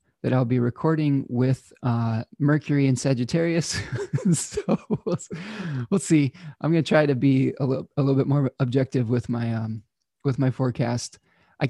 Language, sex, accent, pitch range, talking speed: English, male, American, 120-150 Hz, 165 wpm